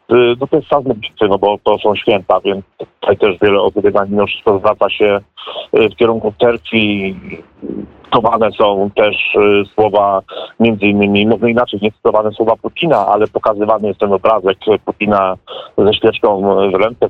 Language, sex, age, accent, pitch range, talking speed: Polish, male, 40-59, native, 100-115 Hz, 145 wpm